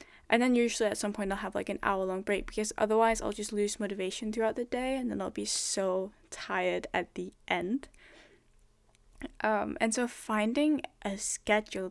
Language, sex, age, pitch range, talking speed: English, female, 10-29, 195-230 Hz, 185 wpm